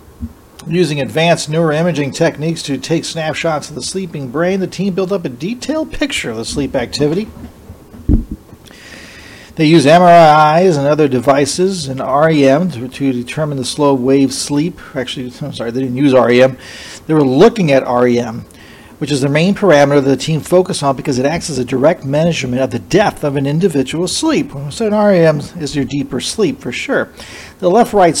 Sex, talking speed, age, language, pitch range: male, 180 wpm, 40-59, English, 135-185 Hz